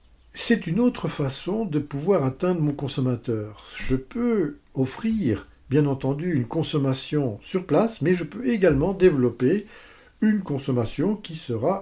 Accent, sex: French, male